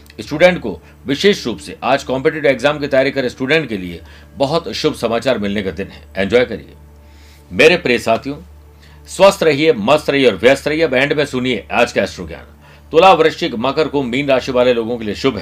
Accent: native